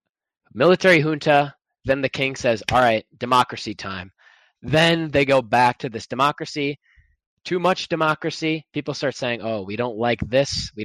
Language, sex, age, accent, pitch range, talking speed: English, male, 20-39, American, 110-160 Hz, 160 wpm